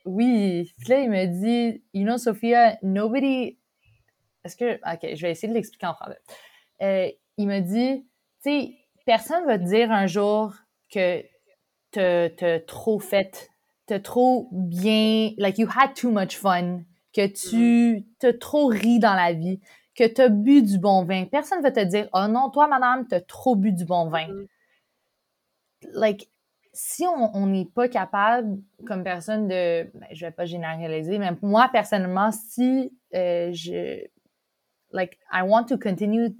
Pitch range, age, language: 180-230 Hz, 20-39, French